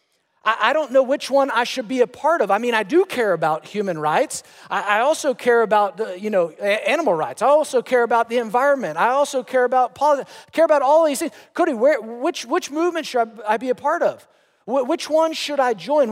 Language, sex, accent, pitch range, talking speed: English, male, American, 175-255 Hz, 225 wpm